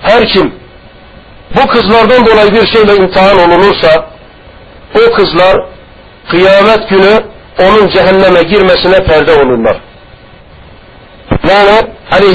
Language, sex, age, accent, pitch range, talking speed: Turkish, male, 60-79, native, 180-215 Hz, 90 wpm